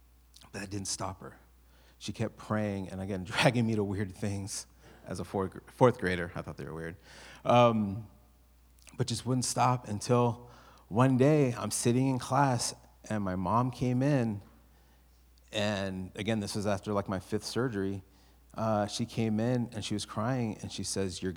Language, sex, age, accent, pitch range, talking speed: English, male, 30-49, American, 95-125 Hz, 175 wpm